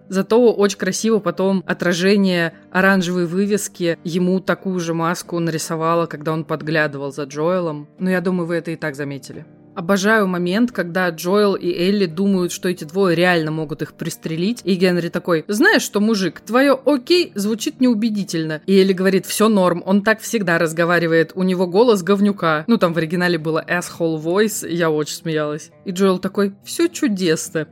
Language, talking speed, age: Russian, 170 wpm, 20-39